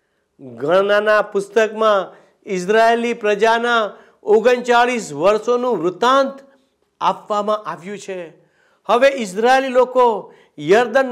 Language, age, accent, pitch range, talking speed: Gujarati, 60-79, native, 180-240 Hz, 65 wpm